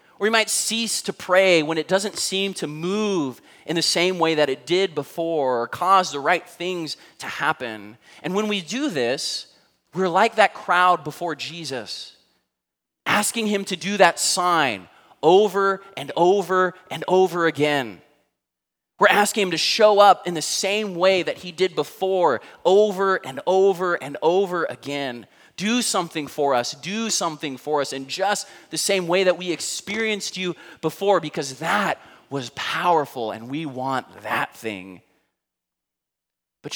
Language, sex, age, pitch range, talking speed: English, male, 20-39, 145-195 Hz, 160 wpm